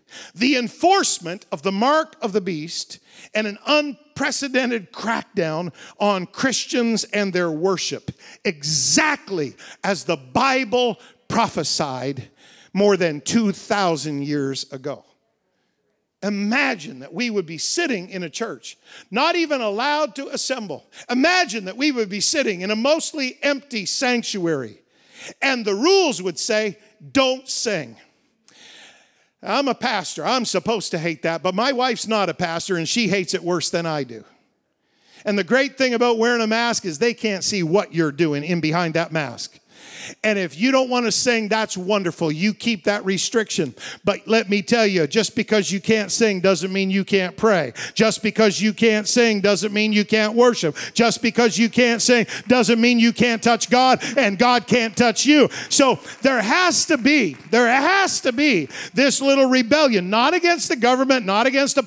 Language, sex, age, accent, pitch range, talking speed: English, male, 50-69, American, 190-255 Hz, 170 wpm